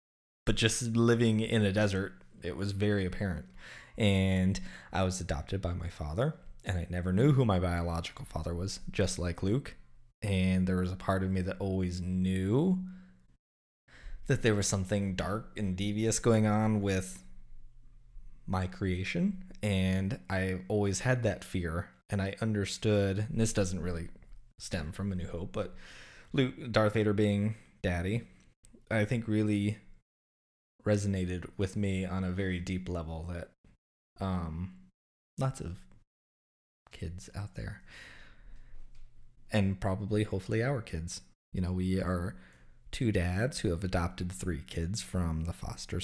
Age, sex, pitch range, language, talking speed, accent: 20-39, male, 90-105 Hz, English, 145 wpm, American